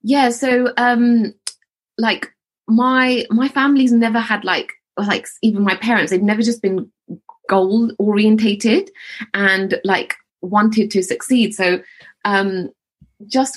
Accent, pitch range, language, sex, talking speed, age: British, 190-265 Hz, English, female, 120 wpm, 20-39